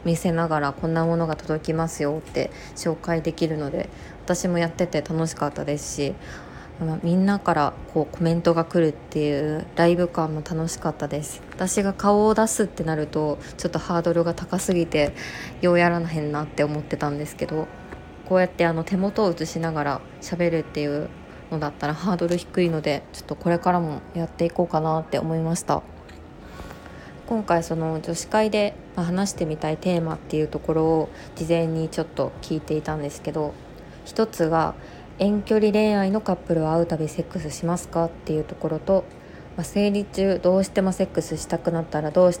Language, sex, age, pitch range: Japanese, female, 20-39, 155-180 Hz